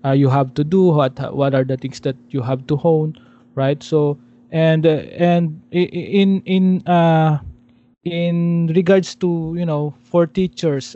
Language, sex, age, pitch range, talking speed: English, male, 20-39, 140-160 Hz, 170 wpm